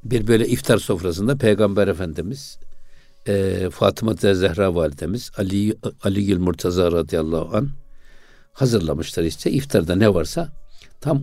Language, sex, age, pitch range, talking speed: Turkish, male, 60-79, 95-130 Hz, 120 wpm